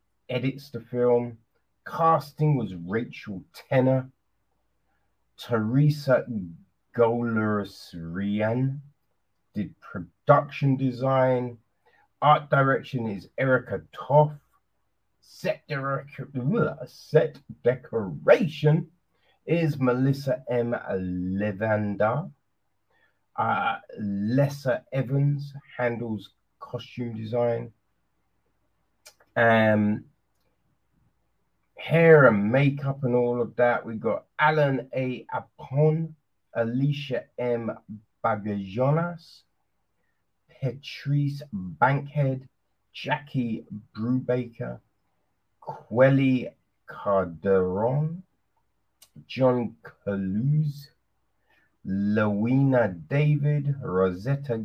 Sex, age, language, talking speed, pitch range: male, 30-49, English, 65 wpm, 105-140 Hz